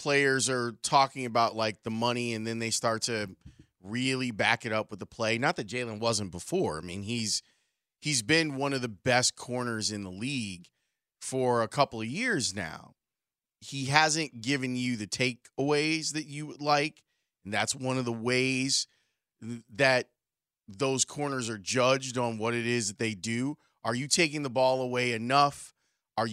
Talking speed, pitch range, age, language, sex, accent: 180 wpm, 115-140 Hz, 30-49, English, male, American